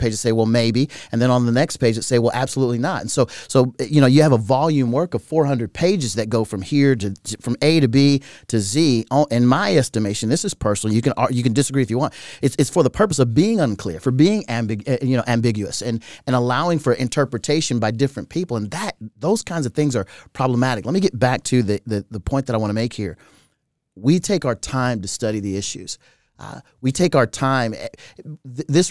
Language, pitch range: English, 115-145 Hz